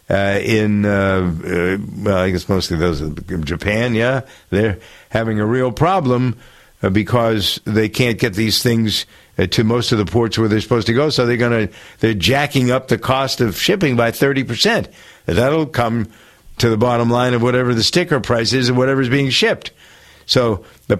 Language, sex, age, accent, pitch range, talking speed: English, male, 60-79, American, 110-135 Hz, 185 wpm